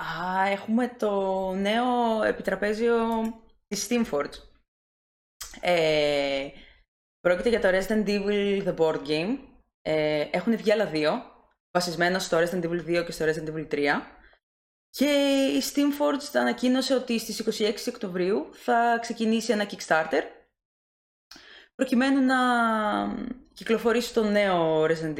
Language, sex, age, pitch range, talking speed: Greek, female, 20-39, 155-235 Hz, 115 wpm